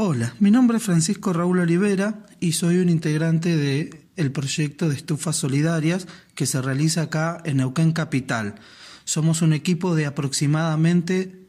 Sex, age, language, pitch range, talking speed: male, 30-49, Spanish, 150-190 Hz, 150 wpm